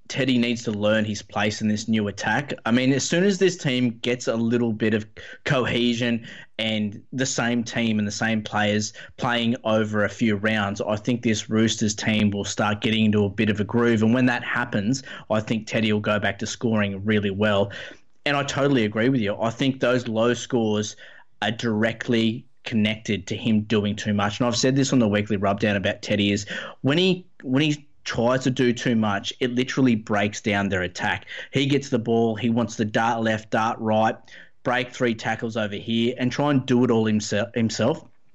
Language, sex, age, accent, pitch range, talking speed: English, male, 20-39, Australian, 105-125 Hz, 205 wpm